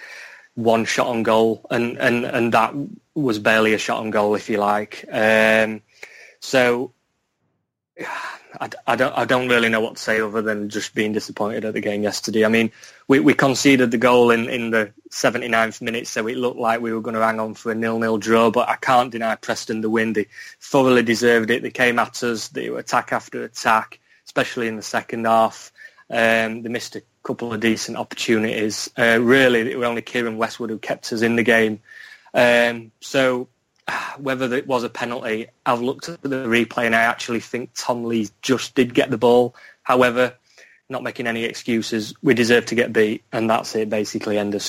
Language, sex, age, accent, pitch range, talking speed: English, male, 20-39, British, 110-125 Hz, 200 wpm